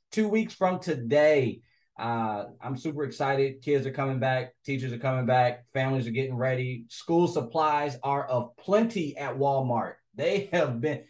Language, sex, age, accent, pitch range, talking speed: English, male, 20-39, American, 110-140 Hz, 160 wpm